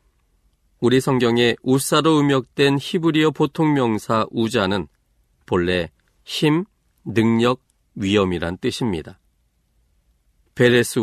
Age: 40-59